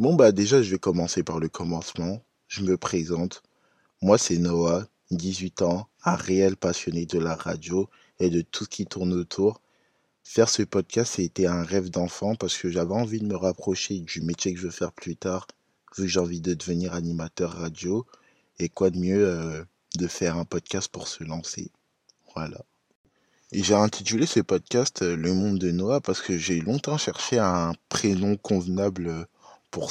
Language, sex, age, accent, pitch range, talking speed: French, male, 20-39, French, 85-100 Hz, 185 wpm